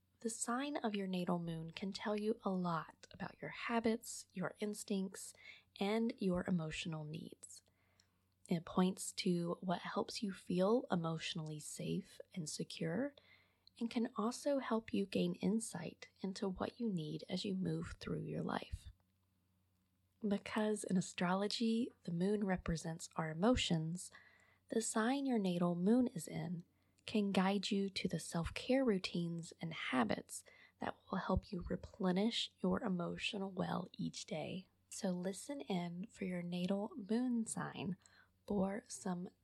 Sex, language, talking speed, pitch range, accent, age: female, English, 140 wpm, 165-210 Hz, American, 20-39